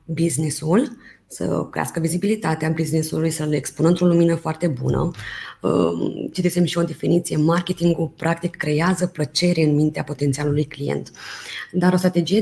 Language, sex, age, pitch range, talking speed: Romanian, female, 20-39, 160-210 Hz, 125 wpm